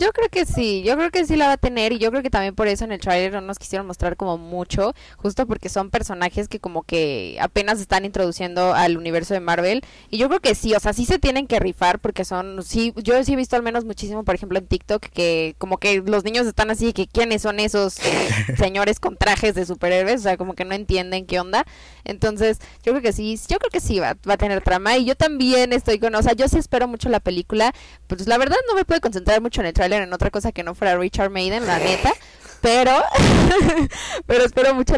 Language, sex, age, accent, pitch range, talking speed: Spanish, female, 10-29, Mexican, 185-240 Hz, 250 wpm